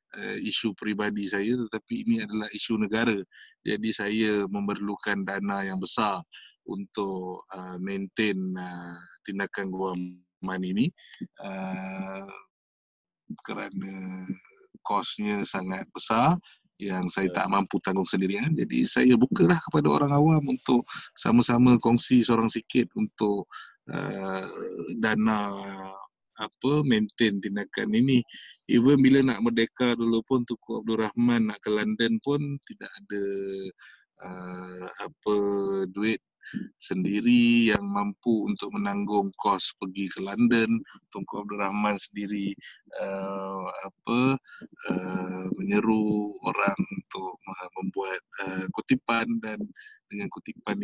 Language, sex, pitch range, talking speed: Malay, male, 95-120 Hz, 115 wpm